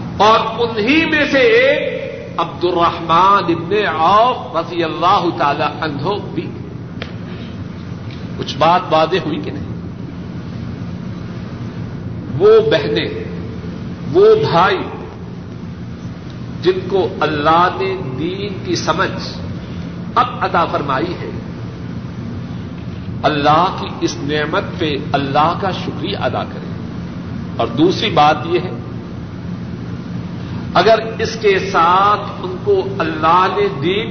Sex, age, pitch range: male, 50-69, 150-220 Hz